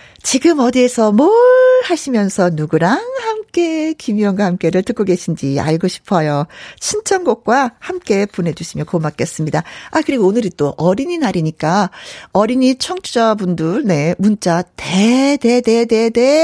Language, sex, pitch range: Korean, female, 175-280 Hz